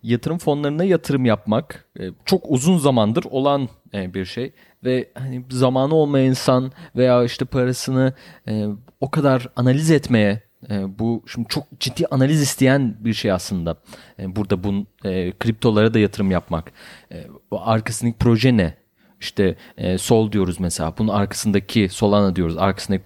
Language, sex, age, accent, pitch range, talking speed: Turkish, male, 30-49, native, 105-140 Hz, 140 wpm